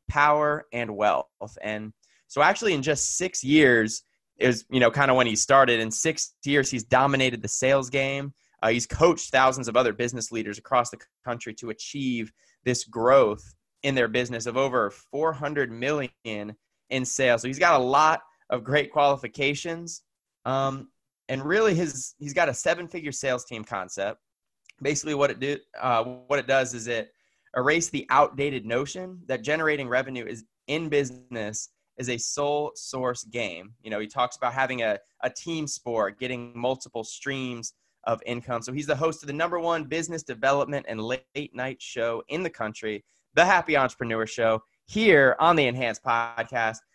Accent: American